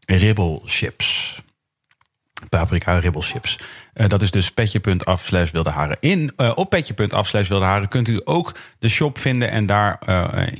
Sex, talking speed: male, 135 wpm